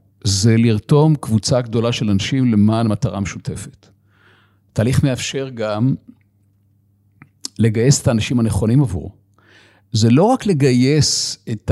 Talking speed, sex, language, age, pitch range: 115 wpm, male, Hebrew, 50-69, 100-130 Hz